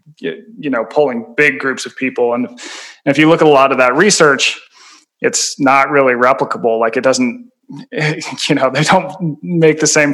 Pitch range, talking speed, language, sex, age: 125-155 Hz, 185 wpm, English, male, 20-39